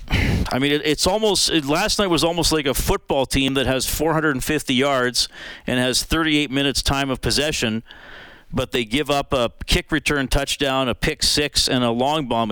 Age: 50-69